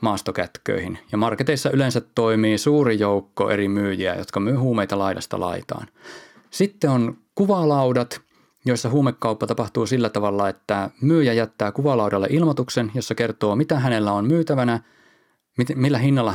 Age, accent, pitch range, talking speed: 20-39, native, 105-135 Hz, 130 wpm